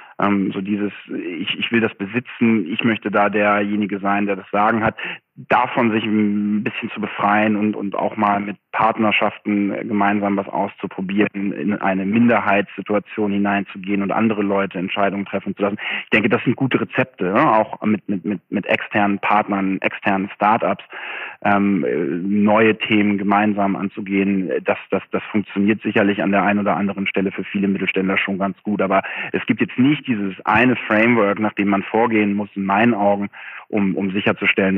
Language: German